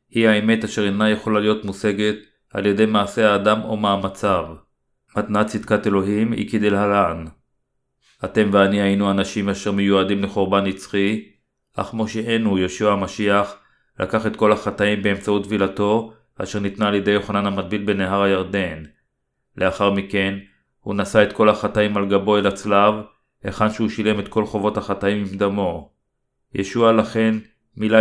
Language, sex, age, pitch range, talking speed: Hebrew, male, 30-49, 95-110 Hz, 145 wpm